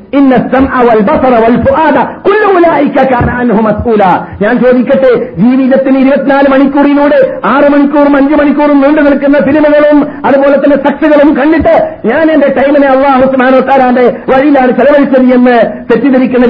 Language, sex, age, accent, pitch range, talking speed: Malayalam, male, 50-69, native, 215-280 Hz, 95 wpm